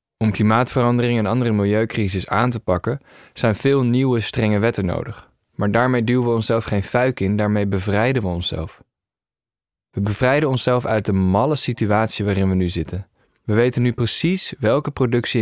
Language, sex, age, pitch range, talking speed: Dutch, male, 20-39, 100-125 Hz, 165 wpm